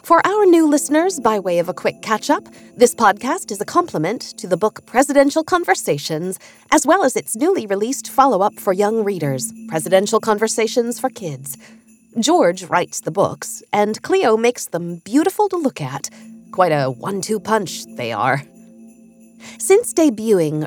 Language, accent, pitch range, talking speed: English, American, 175-270 Hz, 155 wpm